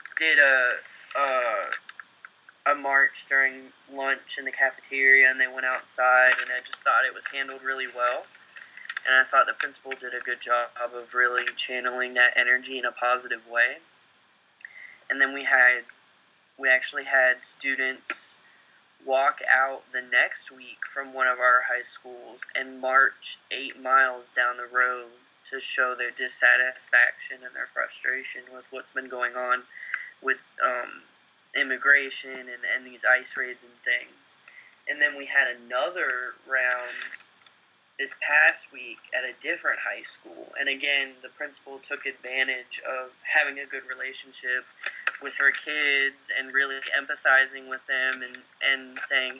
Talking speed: 150 wpm